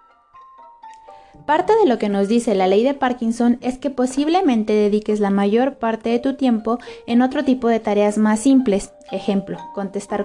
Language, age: Spanish, 20-39